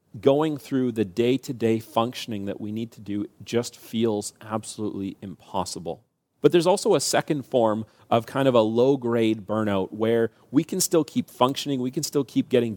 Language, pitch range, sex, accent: English, 110-135 Hz, male, American